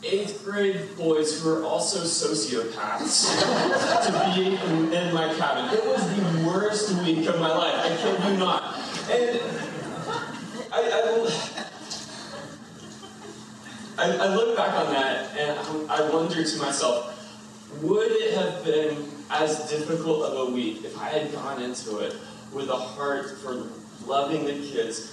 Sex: male